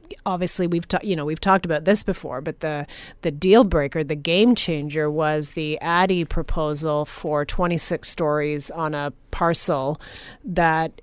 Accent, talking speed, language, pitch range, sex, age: American, 165 wpm, English, 150-180 Hz, female, 30-49